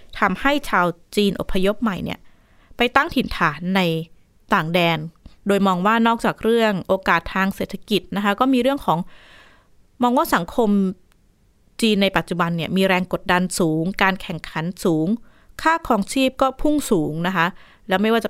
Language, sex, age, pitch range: Thai, female, 20-39, 175-230 Hz